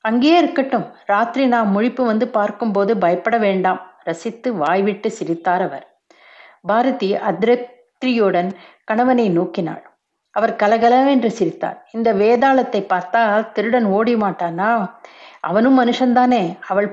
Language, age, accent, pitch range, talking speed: Tamil, 60-79, native, 190-235 Hz, 105 wpm